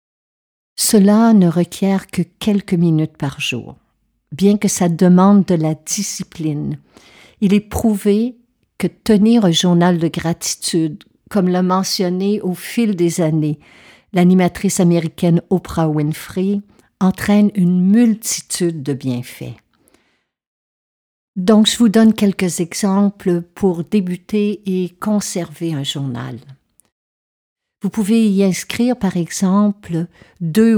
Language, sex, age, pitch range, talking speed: French, female, 50-69, 160-200 Hz, 115 wpm